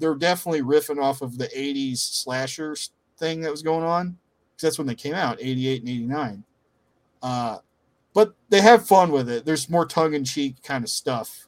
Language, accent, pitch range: English, American, 130-165 Hz